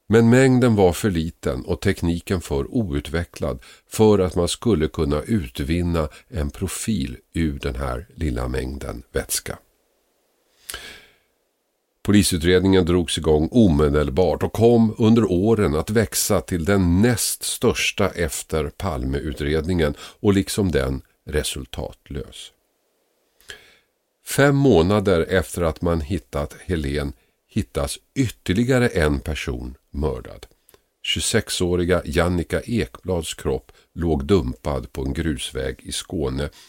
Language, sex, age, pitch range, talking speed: Swedish, male, 50-69, 75-100 Hz, 110 wpm